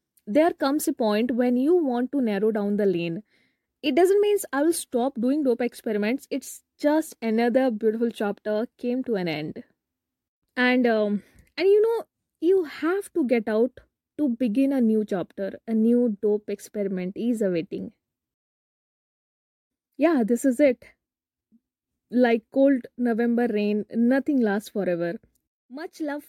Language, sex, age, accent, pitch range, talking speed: English, female, 20-39, Indian, 210-260 Hz, 145 wpm